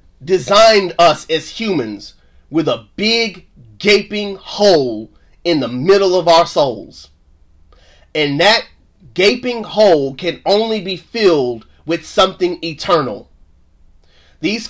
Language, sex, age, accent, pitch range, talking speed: English, male, 30-49, American, 135-205 Hz, 110 wpm